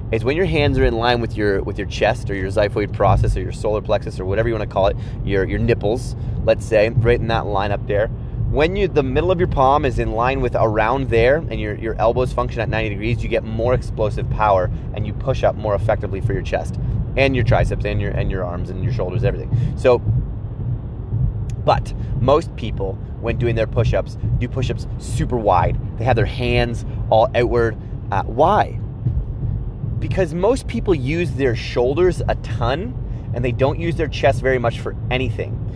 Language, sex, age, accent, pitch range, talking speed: English, male, 30-49, American, 110-125 Hz, 205 wpm